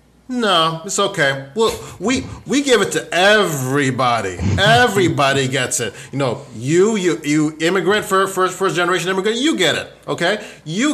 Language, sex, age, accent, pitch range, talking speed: English, male, 30-49, American, 130-160 Hz, 160 wpm